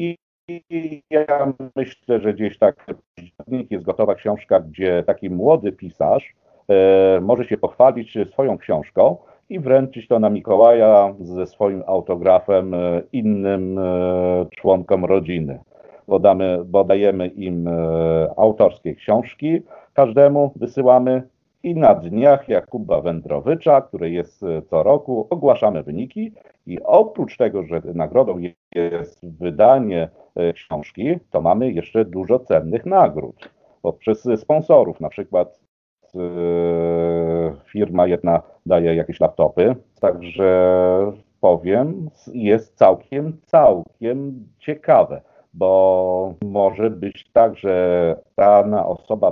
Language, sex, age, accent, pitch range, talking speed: Polish, male, 50-69, native, 90-125 Hz, 100 wpm